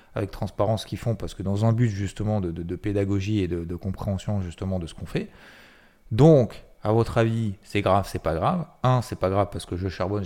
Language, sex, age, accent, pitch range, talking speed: French, male, 30-49, French, 90-115 Hz, 235 wpm